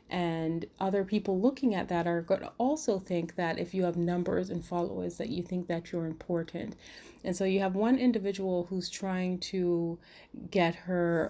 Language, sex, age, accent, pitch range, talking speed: English, female, 30-49, American, 170-195 Hz, 180 wpm